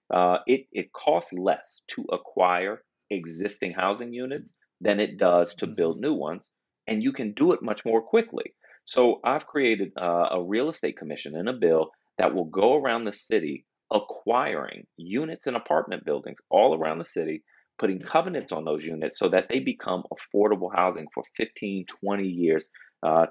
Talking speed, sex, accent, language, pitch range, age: 170 wpm, male, American, English, 85-105 Hz, 30-49